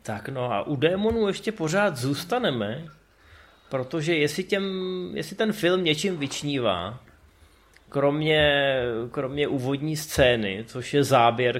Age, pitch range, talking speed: 20-39, 110-135 Hz, 115 wpm